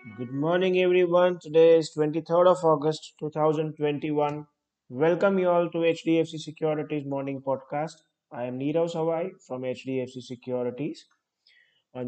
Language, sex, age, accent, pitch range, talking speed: English, male, 20-39, Indian, 135-165 Hz, 125 wpm